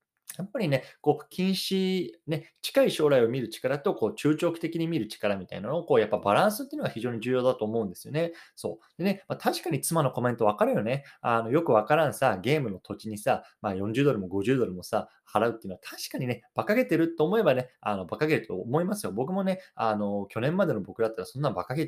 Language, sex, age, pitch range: Japanese, male, 20-39, 105-165 Hz